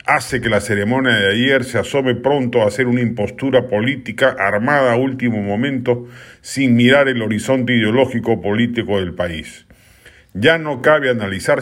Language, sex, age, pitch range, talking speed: Spanish, male, 50-69, 105-135 Hz, 155 wpm